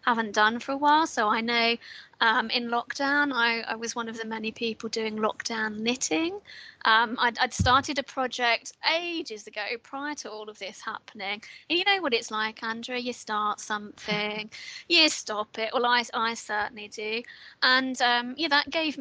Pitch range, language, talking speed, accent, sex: 220-265 Hz, English, 185 wpm, British, female